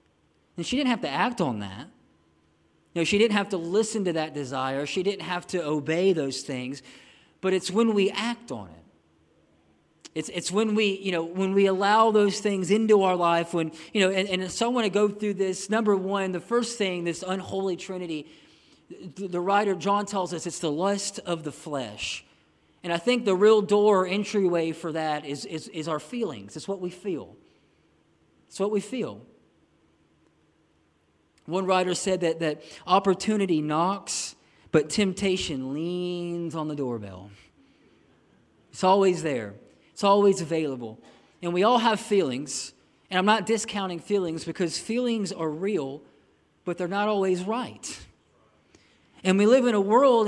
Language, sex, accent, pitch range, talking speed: English, male, American, 165-210 Hz, 175 wpm